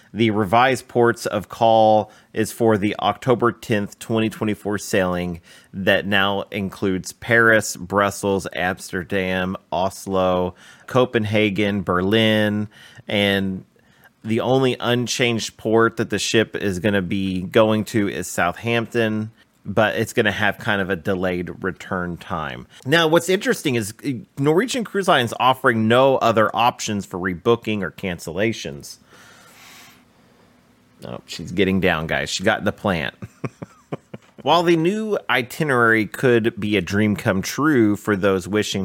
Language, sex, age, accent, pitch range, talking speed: English, male, 30-49, American, 95-120 Hz, 130 wpm